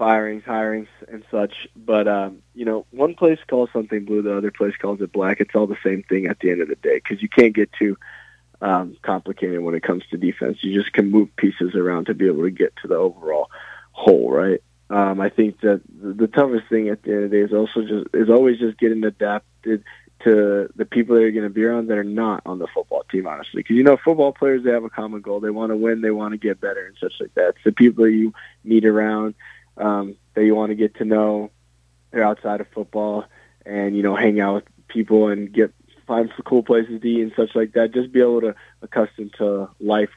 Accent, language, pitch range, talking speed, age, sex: American, English, 100-115 Hz, 245 wpm, 20-39, male